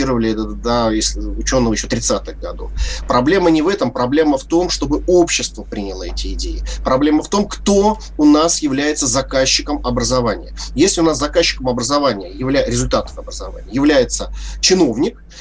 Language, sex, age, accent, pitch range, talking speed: Russian, male, 30-49, native, 120-175 Hz, 135 wpm